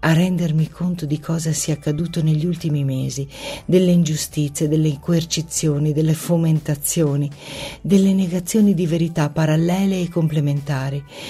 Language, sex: Italian, female